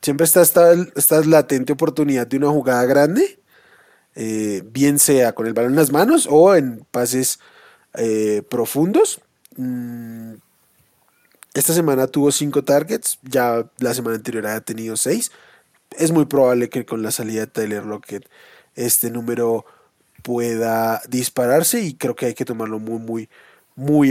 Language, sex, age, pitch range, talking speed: Spanish, male, 20-39, 120-155 Hz, 150 wpm